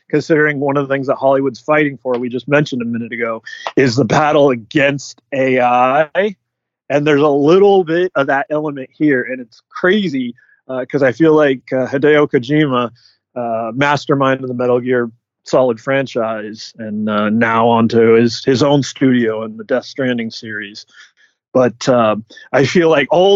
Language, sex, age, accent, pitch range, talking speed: English, male, 30-49, American, 120-150 Hz, 170 wpm